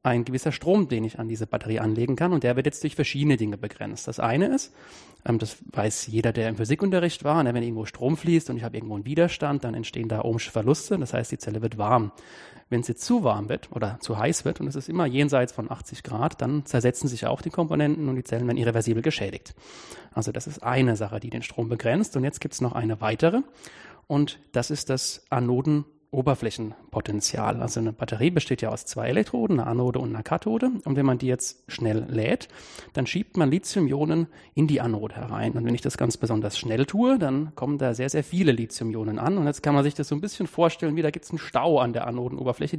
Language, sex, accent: German, male, German